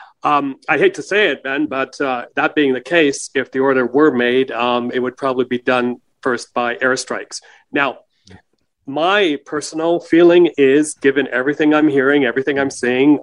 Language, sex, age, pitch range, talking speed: English, male, 40-59, 120-140 Hz, 175 wpm